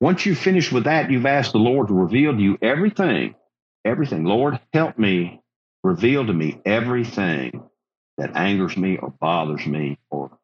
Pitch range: 90-155 Hz